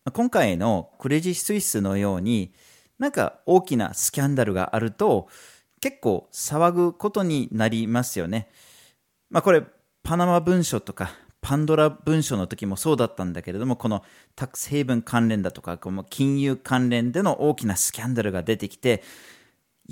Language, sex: Japanese, male